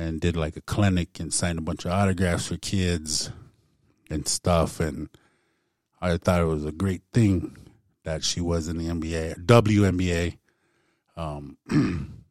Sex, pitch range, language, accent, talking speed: male, 85-105 Hz, English, American, 150 wpm